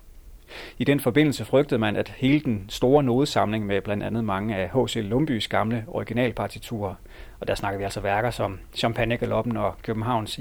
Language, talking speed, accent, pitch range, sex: Danish, 165 wpm, native, 105-125 Hz, male